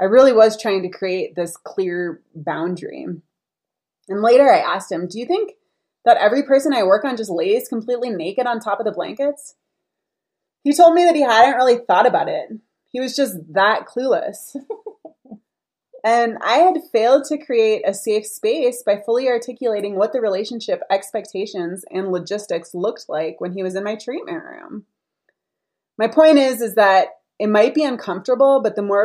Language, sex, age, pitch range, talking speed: English, female, 20-39, 185-250 Hz, 180 wpm